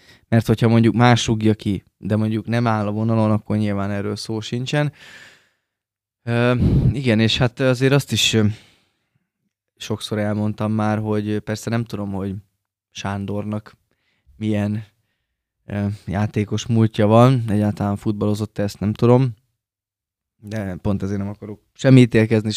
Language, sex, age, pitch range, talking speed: Hungarian, male, 20-39, 100-115 Hz, 130 wpm